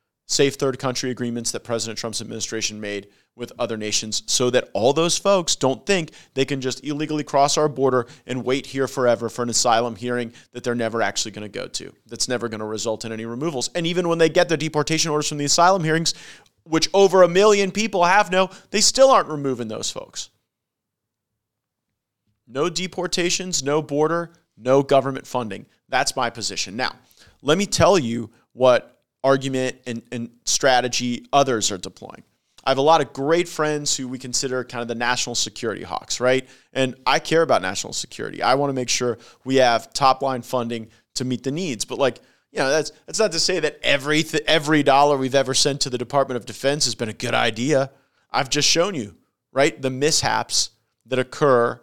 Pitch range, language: 120-155 Hz, English